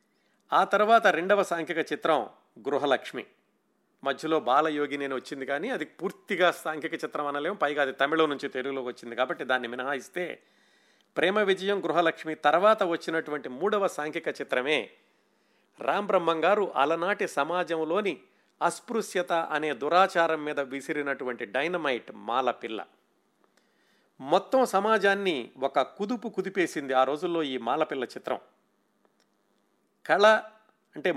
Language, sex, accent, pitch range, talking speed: Telugu, male, native, 145-190 Hz, 105 wpm